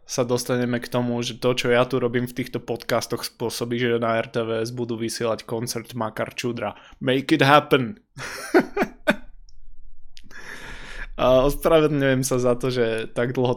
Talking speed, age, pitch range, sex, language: 140 wpm, 20-39, 115-125 Hz, male, Slovak